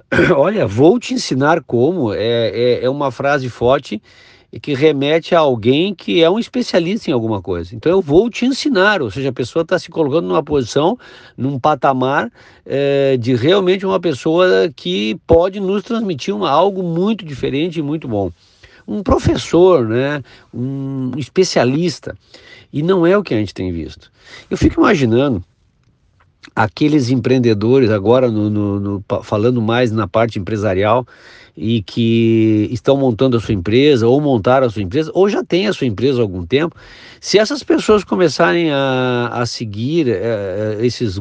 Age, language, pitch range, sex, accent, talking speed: 50-69, Portuguese, 120-170 Hz, male, Brazilian, 160 wpm